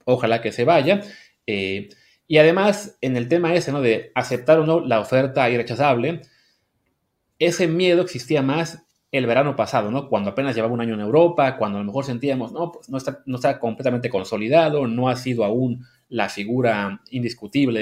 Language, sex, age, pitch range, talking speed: Spanish, male, 30-49, 110-140 Hz, 180 wpm